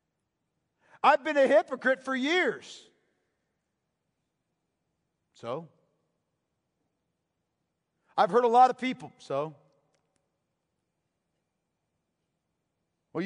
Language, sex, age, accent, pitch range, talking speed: English, male, 50-69, American, 170-250 Hz, 70 wpm